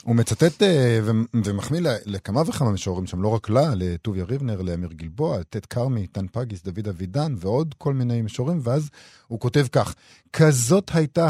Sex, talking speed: male, 175 wpm